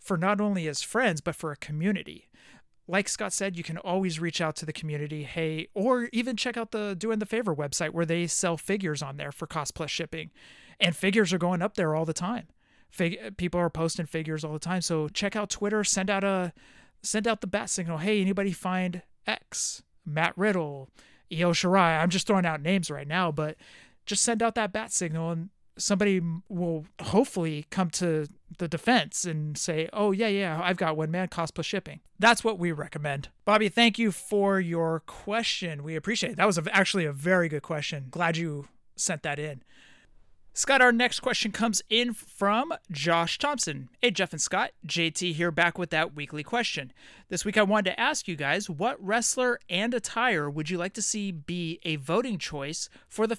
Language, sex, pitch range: English, male, 160-210 Hz